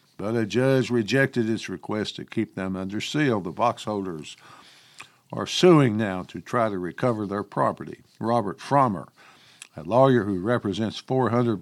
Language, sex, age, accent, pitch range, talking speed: English, male, 60-79, American, 105-130 Hz, 155 wpm